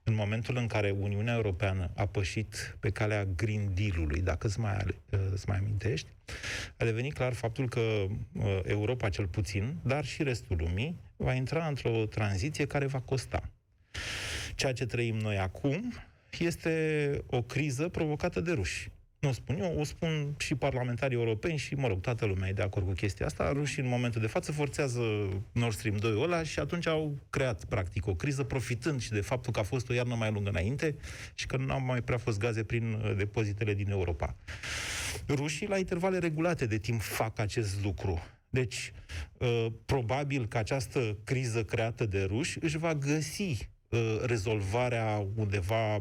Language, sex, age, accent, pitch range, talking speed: Romanian, male, 30-49, native, 100-135 Hz, 170 wpm